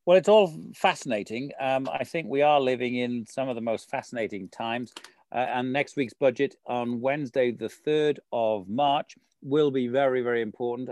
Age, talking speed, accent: 40-59, 180 wpm, British